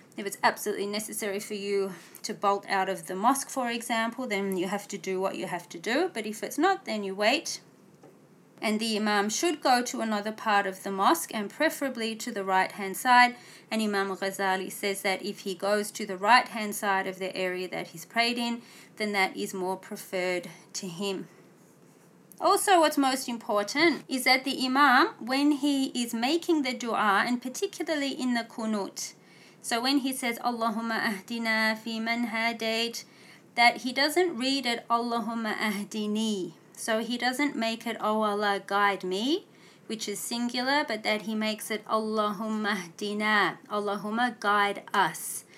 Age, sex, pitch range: 30-49, female, 200-250 Hz